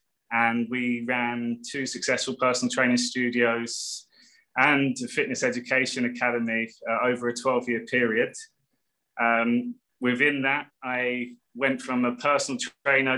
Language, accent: English, British